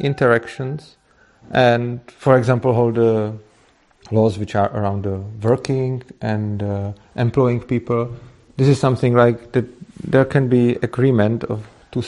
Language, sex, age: Czech, male, 40-59